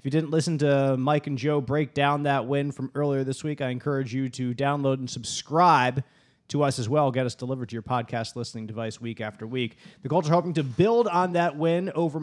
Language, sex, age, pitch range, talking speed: English, male, 30-49, 130-165 Hz, 235 wpm